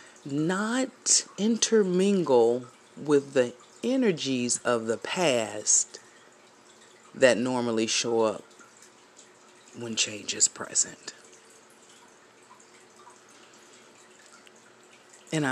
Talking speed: 65 wpm